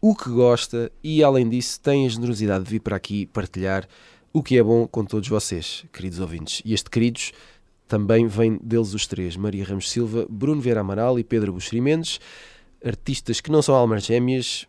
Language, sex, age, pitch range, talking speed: Portuguese, male, 20-39, 95-130 Hz, 190 wpm